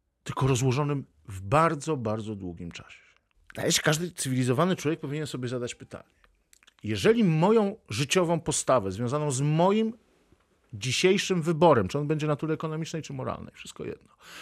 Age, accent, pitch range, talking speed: 50-69, native, 100-155 Hz, 140 wpm